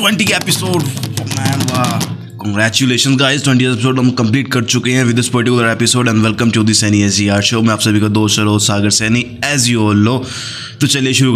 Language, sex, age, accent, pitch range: Hindi, male, 20-39, native, 105-125 Hz